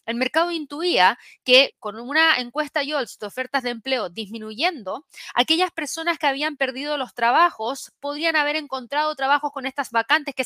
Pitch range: 235-300 Hz